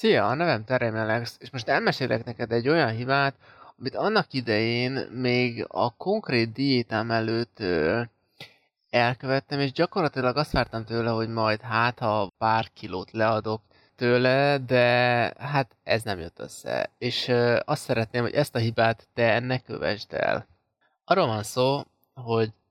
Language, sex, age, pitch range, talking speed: Hungarian, male, 20-39, 110-130 Hz, 145 wpm